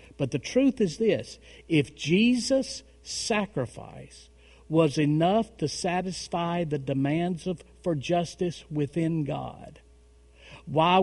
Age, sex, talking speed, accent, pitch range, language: 50-69, male, 110 wpm, American, 110-165 Hz, English